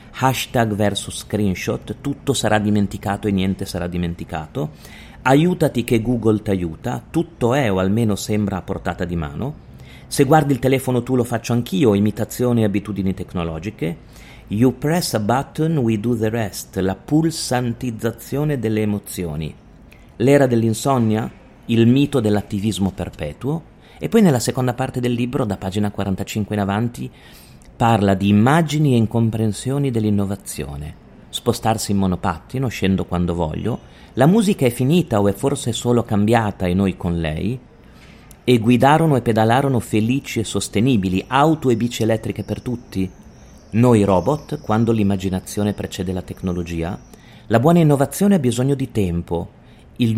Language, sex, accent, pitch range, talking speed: Italian, male, native, 95-125 Hz, 140 wpm